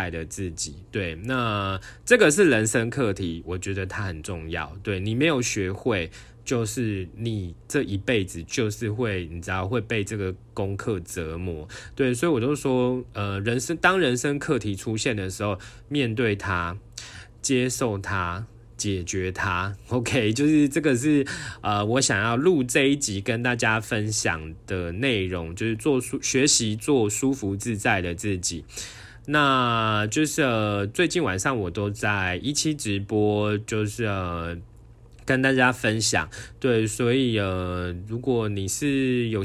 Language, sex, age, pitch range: Chinese, male, 20-39, 100-125 Hz